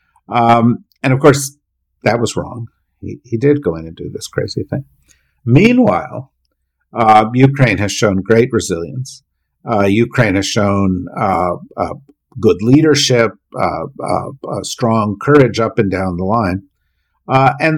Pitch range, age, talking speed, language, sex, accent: 100-130 Hz, 50-69, 150 wpm, English, male, American